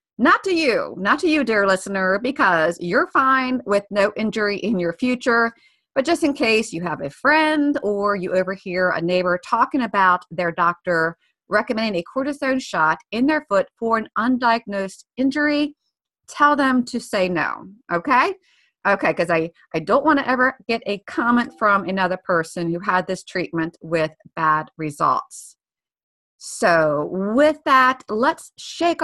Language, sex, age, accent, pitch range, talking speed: English, female, 40-59, American, 185-270 Hz, 160 wpm